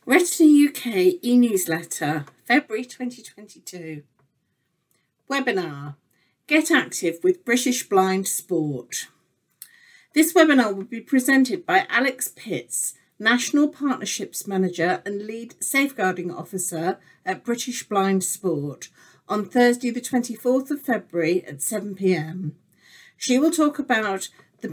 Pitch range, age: 180-260 Hz, 50-69